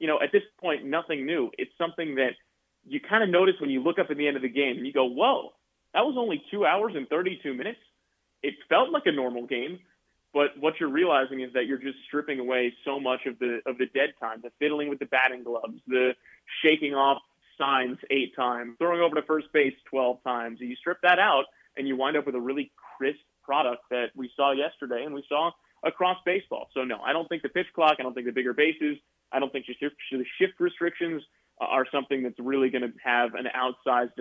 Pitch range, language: 125-155 Hz, English